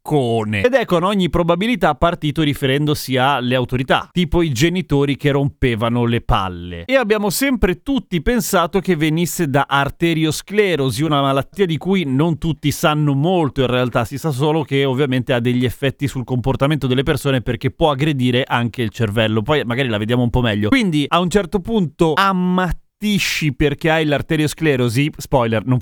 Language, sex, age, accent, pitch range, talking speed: Italian, male, 30-49, native, 130-180 Hz, 165 wpm